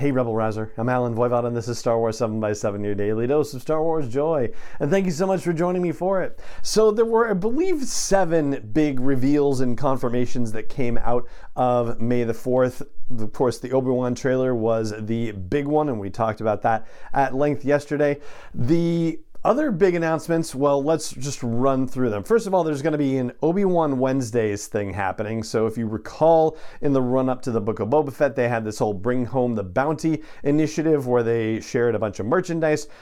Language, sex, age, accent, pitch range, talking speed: English, male, 40-59, American, 115-150 Hz, 205 wpm